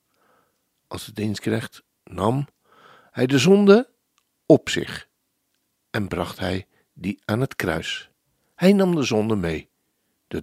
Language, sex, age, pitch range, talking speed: Dutch, male, 60-79, 105-160 Hz, 130 wpm